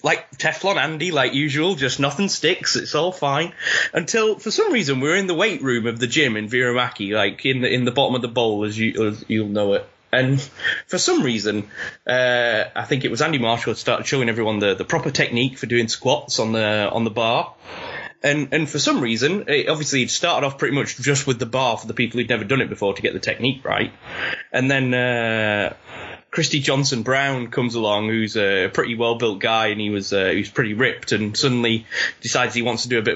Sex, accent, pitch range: male, British, 115-165 Hz